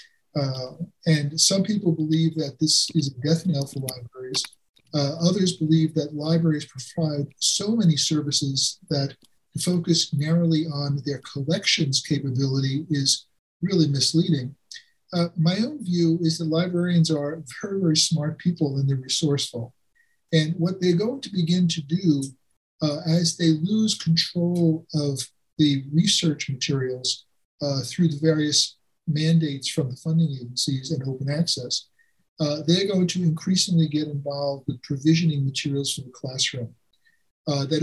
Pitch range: 140-165 Hz